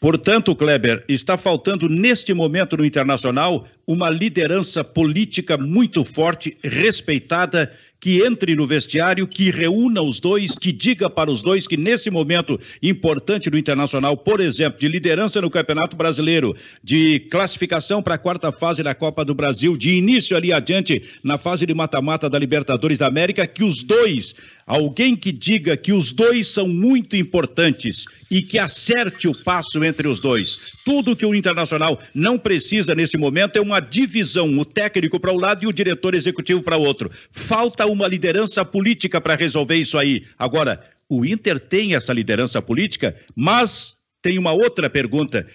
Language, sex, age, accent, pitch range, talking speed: Portuguese, male, 50-69, Brazilian, 155-195 Hz, 165 wpm